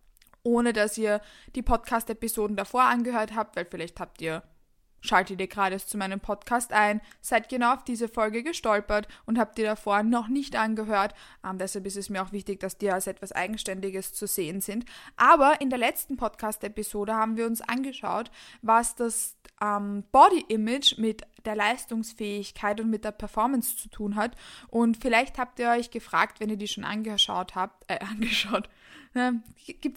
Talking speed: 170 wpm